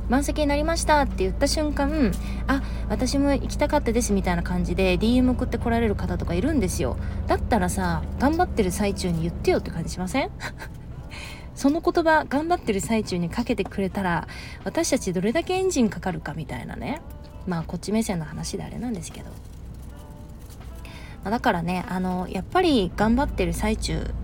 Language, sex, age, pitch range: Japanese, female, 20-39, 175-275 Hz